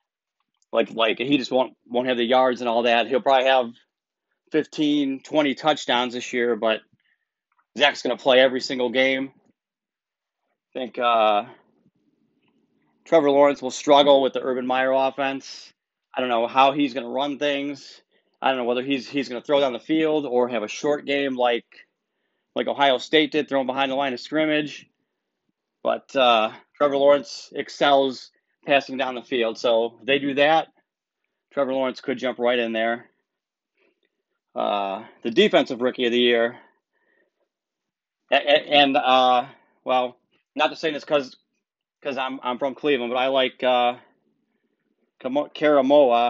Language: English